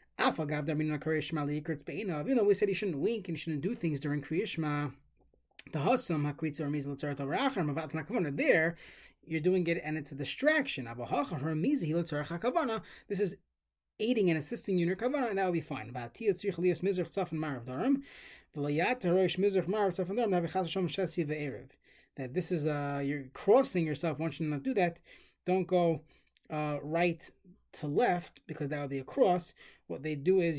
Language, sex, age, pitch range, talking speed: English, male, 30-49, 145-185 Hz, 120 wpm